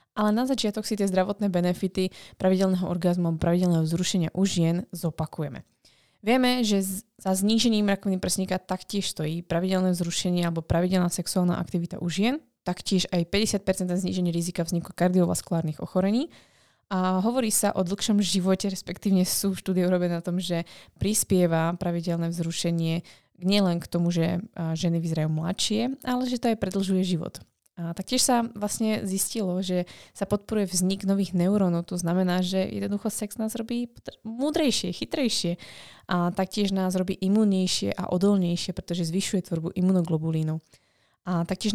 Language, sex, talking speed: Slovak, female, 145 wpm